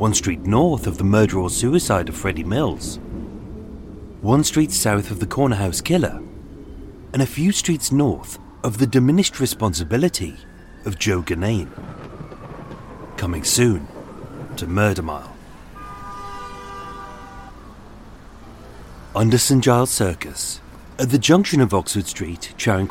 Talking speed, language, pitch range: 125 wpm, English, 95-140 Hz